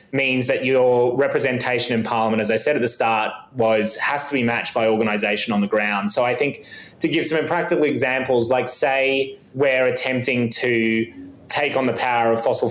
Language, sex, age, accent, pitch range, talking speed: English, male, 20-39, Australian, 115-135 Hz, 195 wpm